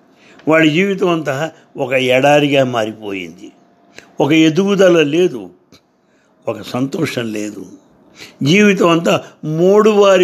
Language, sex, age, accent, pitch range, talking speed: English, male, 60-79, Indian, 130-180 Hz, 95 wpm